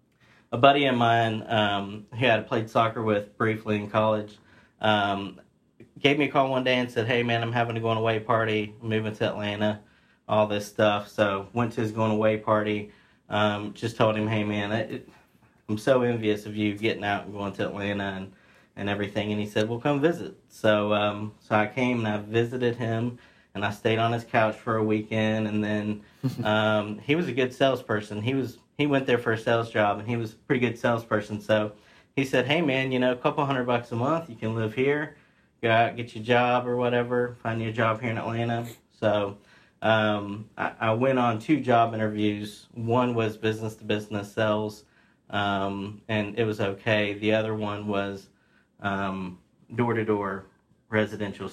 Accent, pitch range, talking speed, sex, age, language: American, 105-120 Hz, 200 wpm, male, 40-59, English